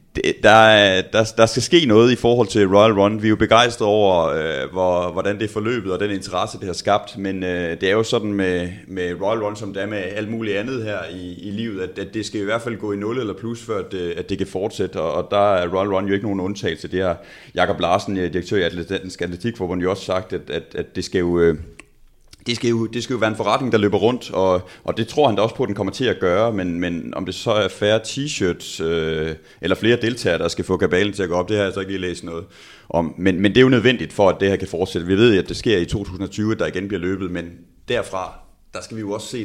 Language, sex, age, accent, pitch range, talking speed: Danish, male, 30-49, native, 90-110 Hz, 280 wpm